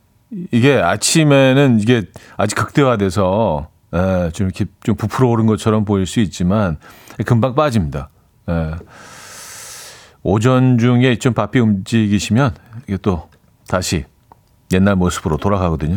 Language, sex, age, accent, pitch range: Korean, male, 40-59, native, 100-140 Hz